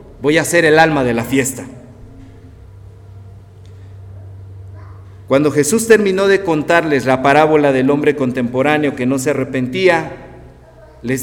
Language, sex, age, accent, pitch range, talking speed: Spanish, male, 50-69, Mexican, 135-220 Hz, 125 wpm